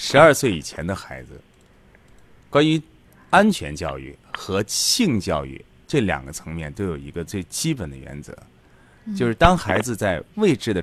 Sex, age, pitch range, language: male, 30-49, 80-130 Hz, Chinese